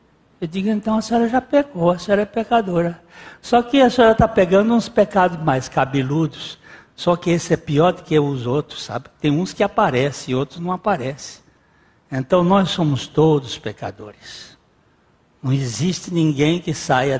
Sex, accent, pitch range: male, Brazilian, 135-200 Hz